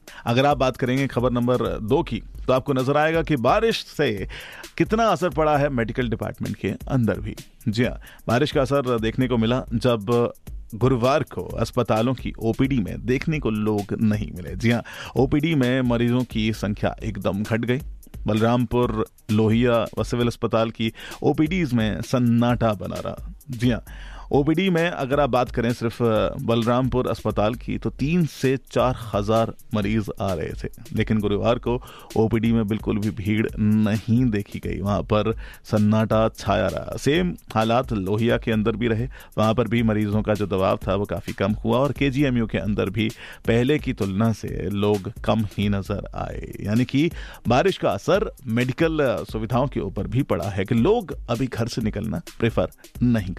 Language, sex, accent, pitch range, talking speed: Hindi, male, native, 105-125 Hz, 175 wpm